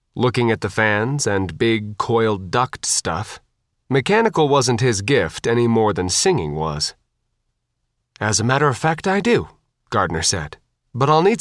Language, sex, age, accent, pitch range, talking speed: English, male, 30-49, American, 100-150 Hz, 160 wpm